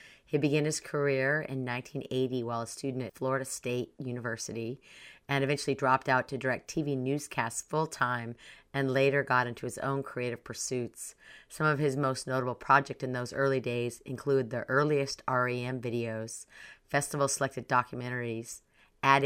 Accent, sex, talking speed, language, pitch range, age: American, female, 150 wpm, English, 120-140 Hz, 40-59